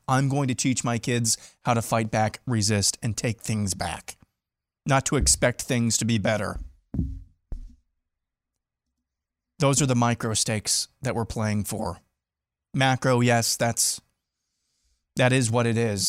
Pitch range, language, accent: 105-125 Hz, English, American